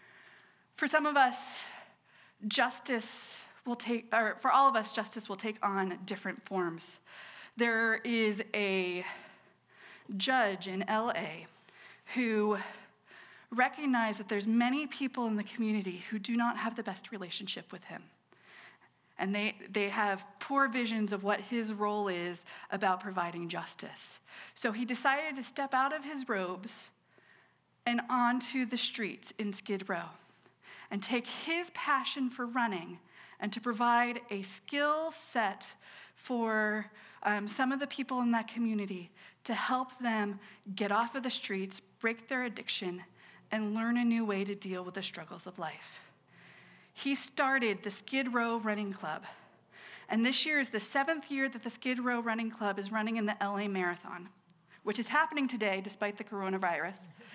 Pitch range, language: 200-250 Hz, English